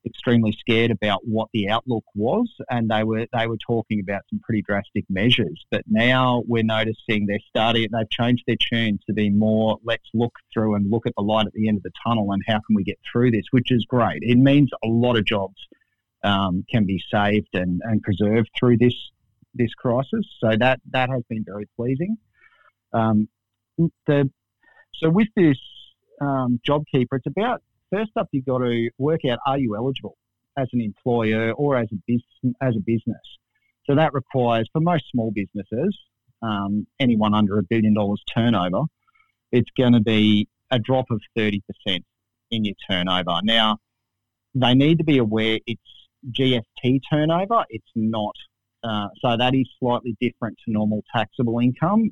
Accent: Australian